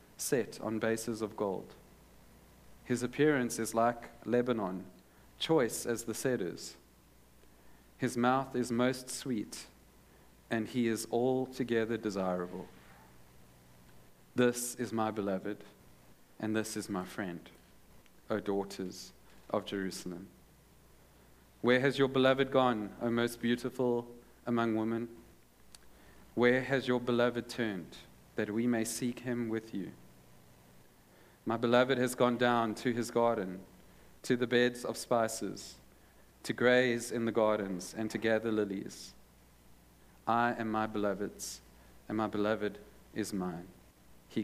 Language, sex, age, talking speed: English, male, 40-59, 125 wpm